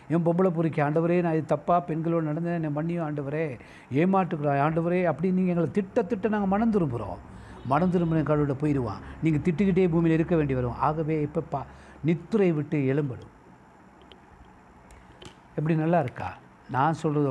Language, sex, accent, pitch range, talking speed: Tamil, male, native, 130-180 Hz, 150 wpm